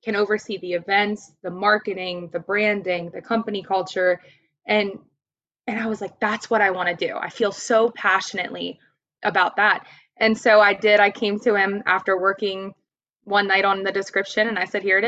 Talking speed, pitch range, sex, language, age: 190 wpm, 185-230 Hz, female, English, 20-39